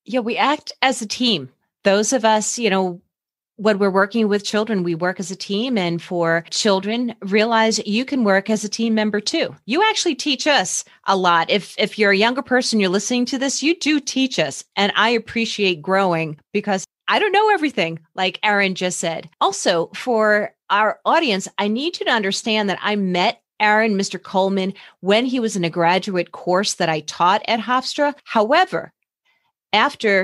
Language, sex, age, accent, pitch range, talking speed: English, female, 30-49, American, 180-230 Hz, 190 wpm